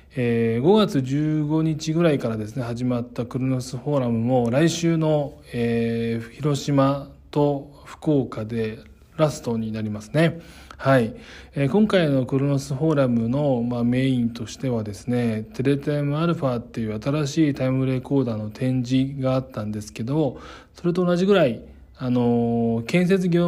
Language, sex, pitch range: Japanese, male, 115-140 Hz